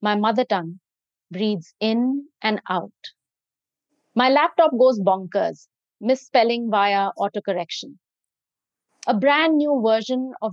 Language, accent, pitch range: Hindi, native, 200-255 Hz